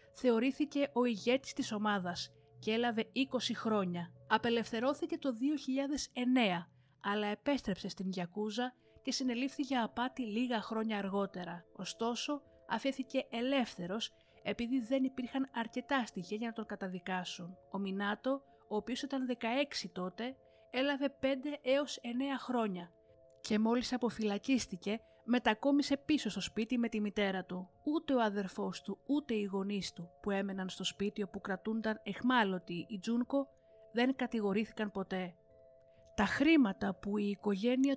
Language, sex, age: Greek, female, 30-49